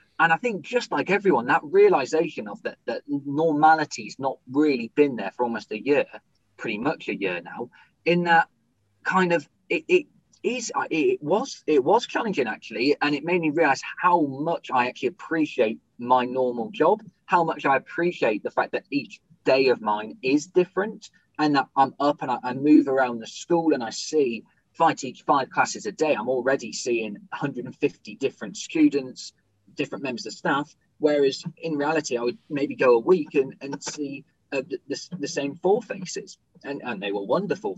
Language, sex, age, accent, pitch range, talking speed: English, male, 20-39, British, 135-180 Hz, 185 wpm